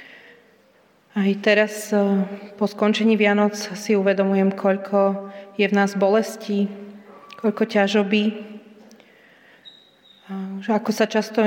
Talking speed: 90 wpm